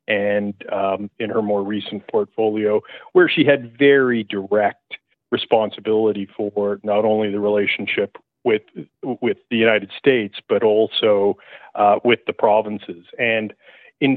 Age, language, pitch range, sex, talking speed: 40-59, English, 100-120 Hz, male, 130 wpm